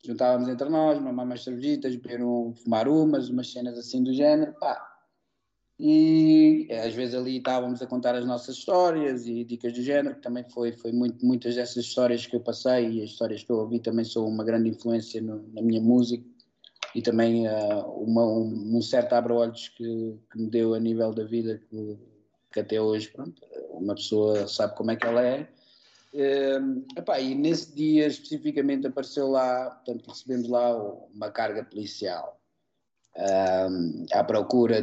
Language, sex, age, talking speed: Portuguese, male, 20-39, 160 wpm